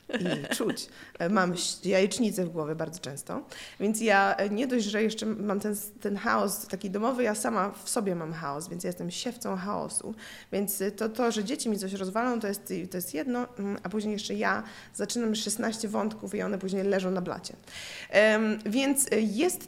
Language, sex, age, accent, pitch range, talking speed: Polish, female, 20-39, native, 185-225 Hz, 175 wpm